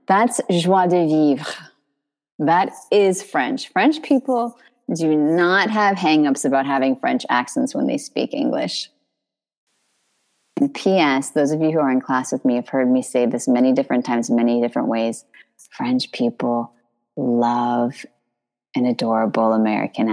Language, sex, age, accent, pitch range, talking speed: English, female, 30-49, American, 130-195 Hz, 145 wpm